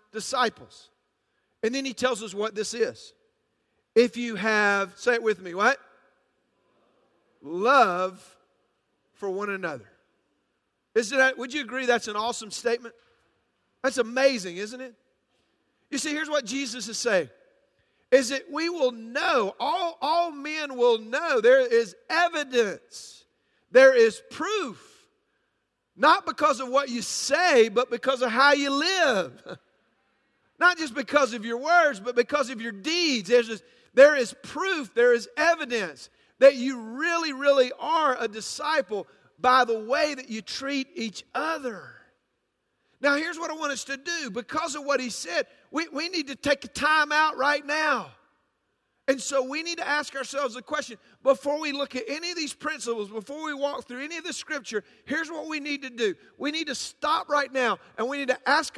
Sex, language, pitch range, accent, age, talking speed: male, English, 235-310 Hz, American, 40-59, 170 wpm